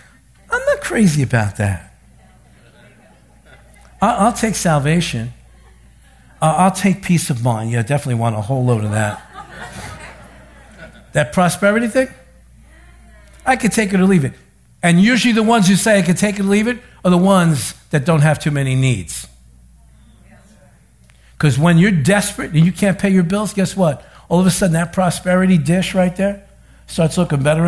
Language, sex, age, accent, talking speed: English, male, 60-79, American, 170 wpm